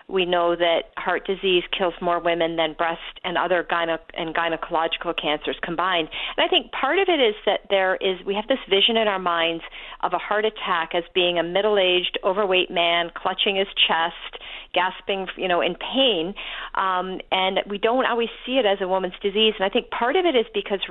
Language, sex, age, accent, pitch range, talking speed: English, female, 40-59, American, 175-220 Hz, 200 wpm